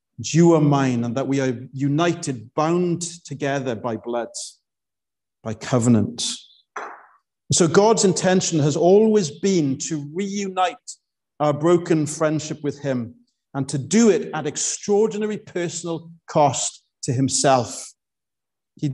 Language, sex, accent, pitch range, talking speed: English, male, British, 135-185 Hz, 120 wpm